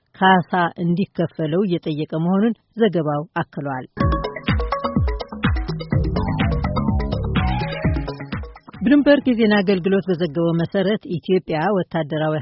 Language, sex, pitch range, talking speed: Amharic, female, 165-200 Hz, 65 wpm